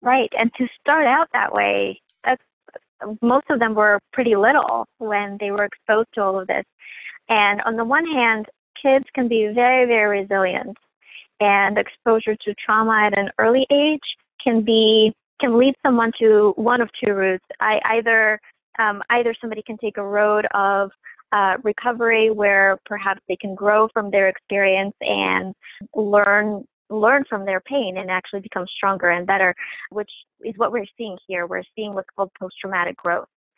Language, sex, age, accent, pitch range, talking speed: English, female, 20-39, American, 195-225 Hz, 170 wpm